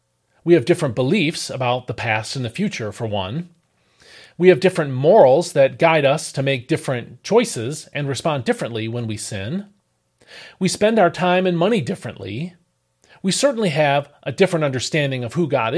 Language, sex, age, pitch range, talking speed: English, male, 40-59, 120-180 Hz, 170 wpm